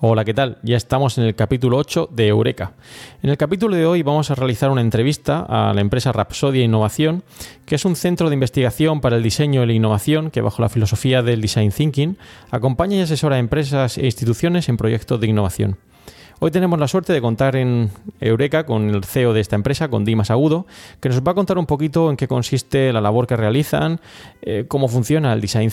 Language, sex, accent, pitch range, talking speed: Spanish, male, Spanish, 110-150 Hz, 215 wpm